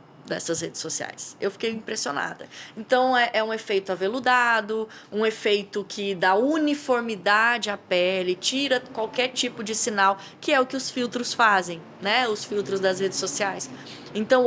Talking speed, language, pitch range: 160 wpm, Portuguese, 190-245 Hz